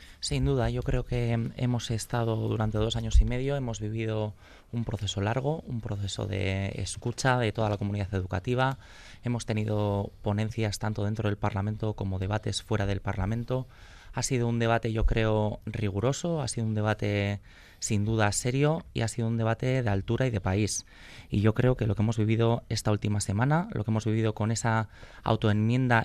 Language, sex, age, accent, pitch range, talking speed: Spanish, male, 20-39, Spanish, 105-120 Hz, 185 wpm